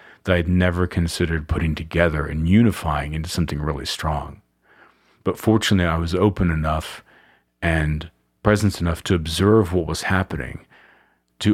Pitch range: 75-100 Hz